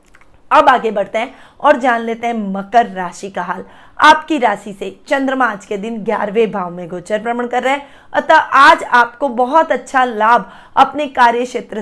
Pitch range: 225-270 Hz